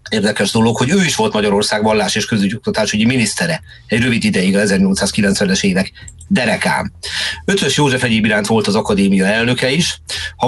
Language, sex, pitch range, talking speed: Hungarian, male, 105-155 Hz, 155 wpm